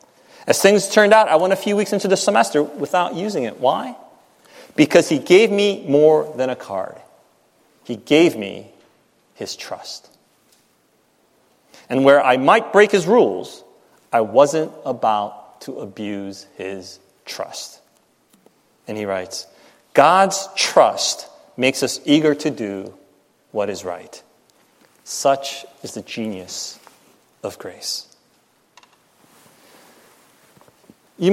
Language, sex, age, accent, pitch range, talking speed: English, male, 30-49, American, 110-160 Hz, 120 wpm